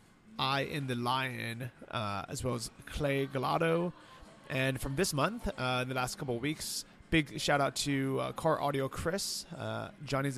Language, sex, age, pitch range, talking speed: English, male, 30-49, 110-140 Hz, 180 wpm